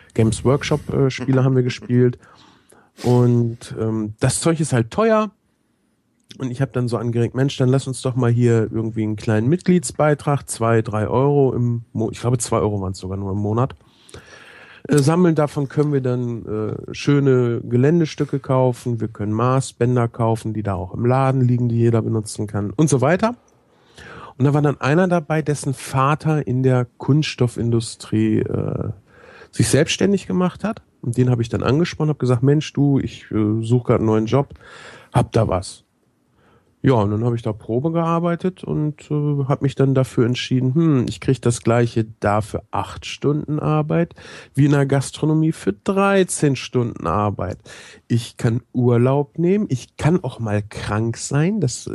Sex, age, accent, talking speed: male, 40-59, German, 175 wpm